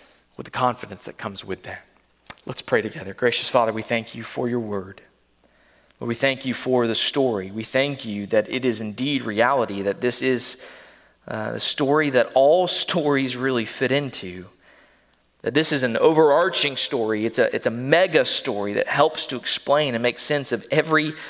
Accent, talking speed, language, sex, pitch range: American, 185 wpm, English, male, 115-160 Hz